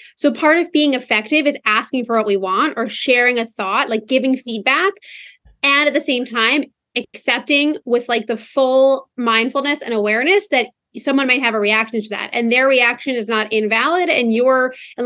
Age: 30-49